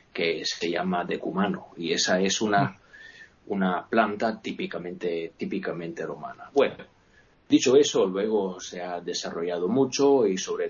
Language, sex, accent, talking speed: Spanish, male, Spanish, 130 wpm